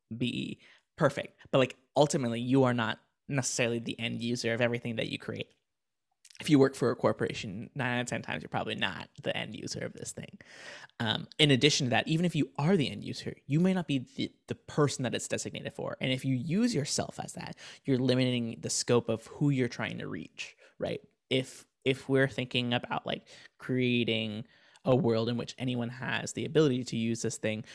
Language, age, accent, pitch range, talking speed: English, 20-39, American, 120-135 Hz, 210 wpm